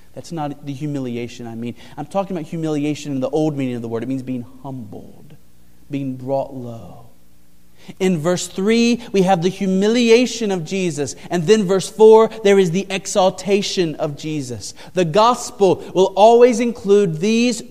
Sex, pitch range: male, 125-190 Hz